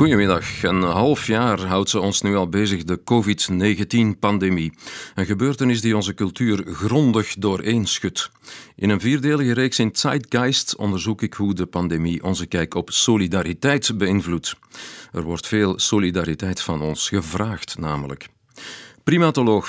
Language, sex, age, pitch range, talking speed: Dutch, male, 50-69, 90-110 Hz, 135 wpm